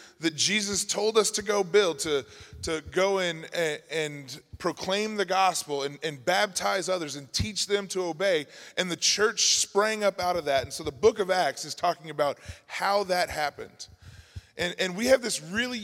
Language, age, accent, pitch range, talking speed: English, 20-39, American, 160-205 Hz, 195 wpm